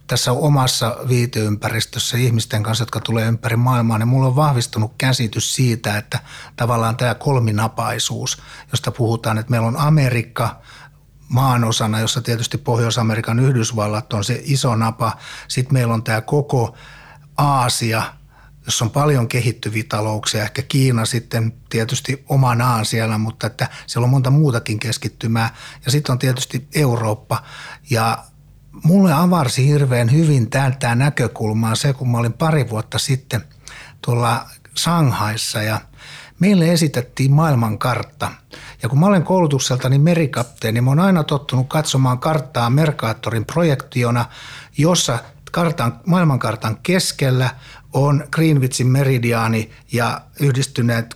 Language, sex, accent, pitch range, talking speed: Finnish, male, native, 115-145 Hz, 125 wpm